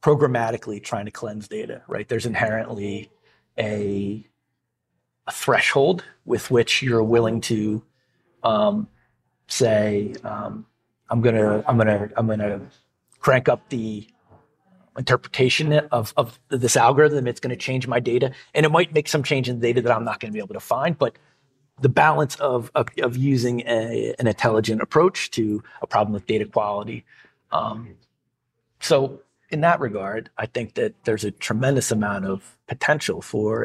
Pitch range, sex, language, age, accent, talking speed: 110-135 Hz, male, English, 40-59, American, 155 wpm